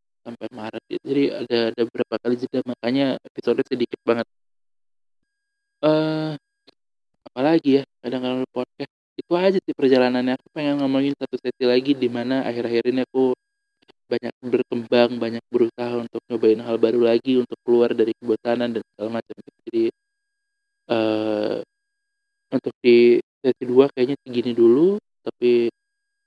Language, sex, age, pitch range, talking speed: Indonesian, male, 20-39, 120-170 Hz, 135 wpm